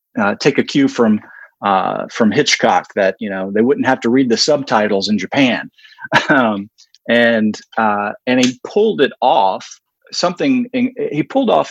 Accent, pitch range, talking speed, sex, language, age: American, 110-155 Hz, 170 wpm, male, English, 40-59